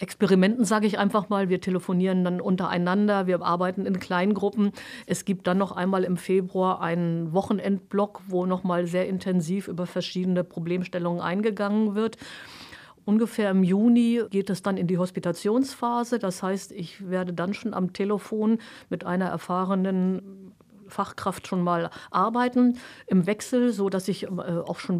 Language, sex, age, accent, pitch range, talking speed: German, female, 50-69, German, 185-215 Hz, 150 wpm